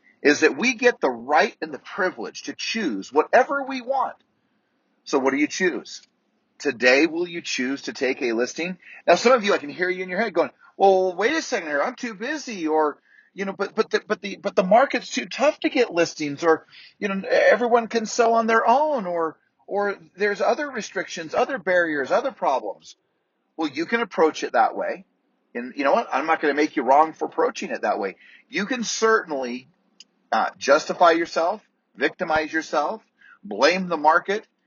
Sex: male